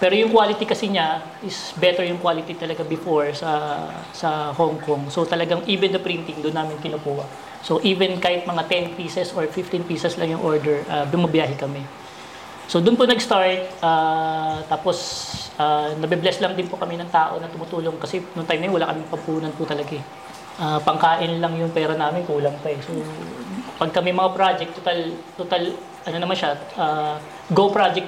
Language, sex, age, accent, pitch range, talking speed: Filipino, female, 20-39, native, 150-175 Hz, 180 wpm